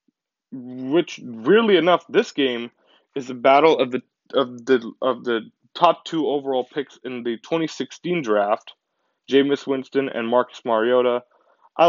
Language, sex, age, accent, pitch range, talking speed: English, male, 20-39, American, 120-150 Hz, 145 wpm